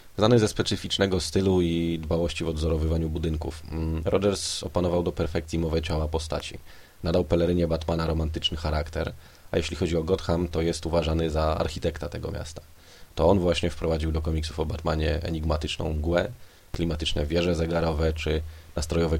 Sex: male